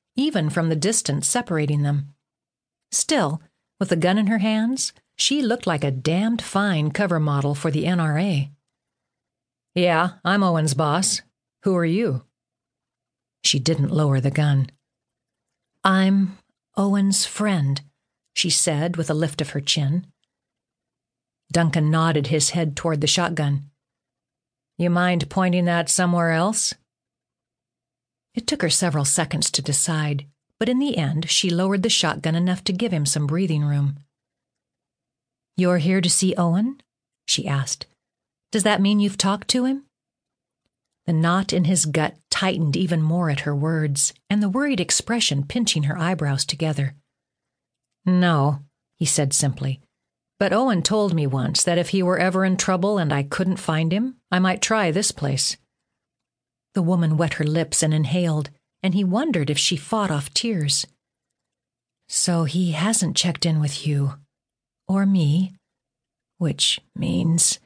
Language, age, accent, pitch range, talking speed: English, 50-69, American, 140-185 Hz, 150 wpm